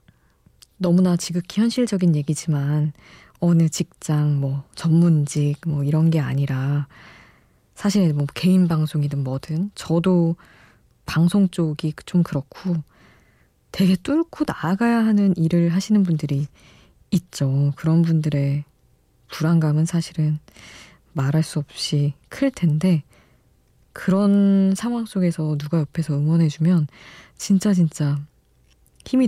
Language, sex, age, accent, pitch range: Korean, female, 20-39, native, 145-180 Hz